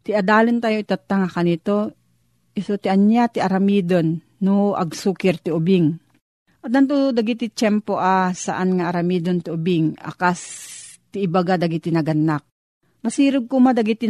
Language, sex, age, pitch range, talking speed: Filipino, female, 40-59, 180-225 Hz, 130 wpm